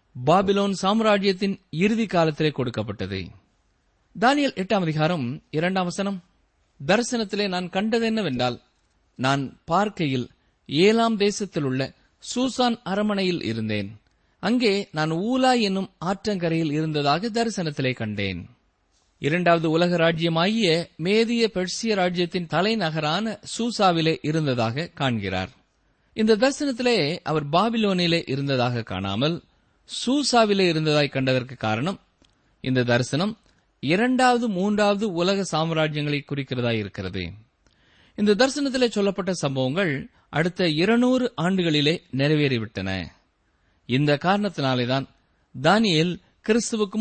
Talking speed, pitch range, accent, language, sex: 85 wpm, 130-210 Hz, native, Tamil, male